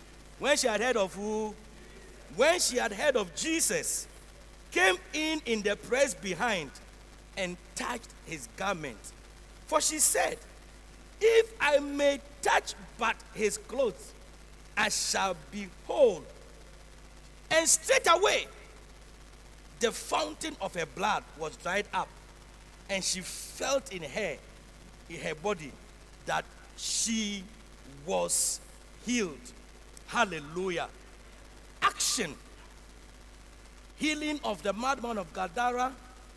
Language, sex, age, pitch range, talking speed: English, male, 50-69, 195-280 Hz, 110 wpm